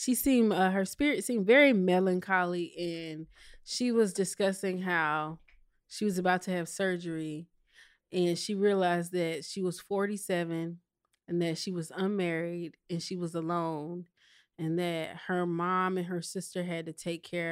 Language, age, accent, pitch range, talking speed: English, 20-39, American, 170-205 Hz, 160 wpm